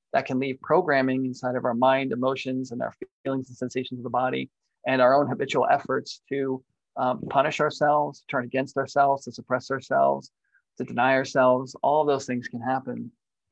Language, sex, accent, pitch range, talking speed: English, male, American, 125-135 Hz, 180 wpm